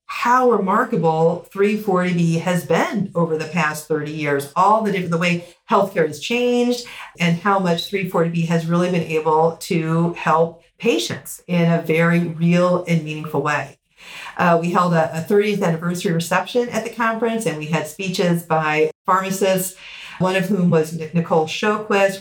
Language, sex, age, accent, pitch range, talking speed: English, female, 40-59, American, 160-195 Hz, 155 wpm